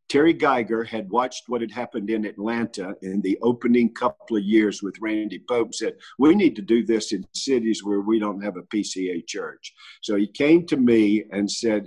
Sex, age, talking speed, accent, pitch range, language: male, 50-69, 205 wpm, American, 105-155 Hz, English